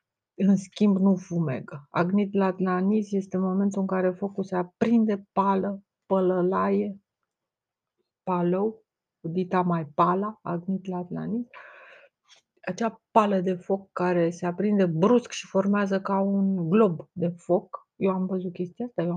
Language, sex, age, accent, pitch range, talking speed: Romanian, female, 30-49, native, 180-205 Hz, 130 wpm